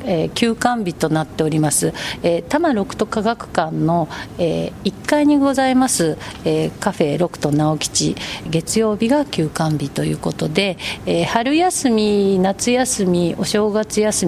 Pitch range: 165-230 Hz